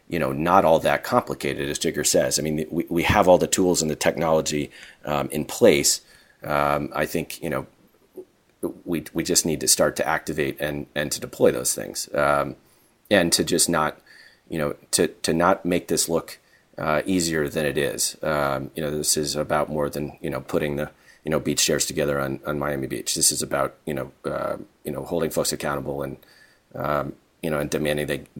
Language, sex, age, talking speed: English, male, 30-49, 210 wpm